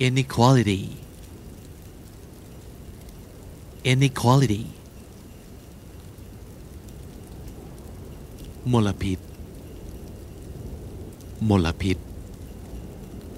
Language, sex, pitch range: Thai, male, 80-105 Hz